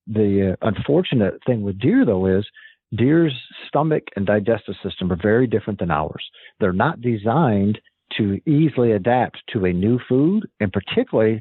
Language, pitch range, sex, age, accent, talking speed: English, 105-125 Hz, male, 50-69, American, 155 wpm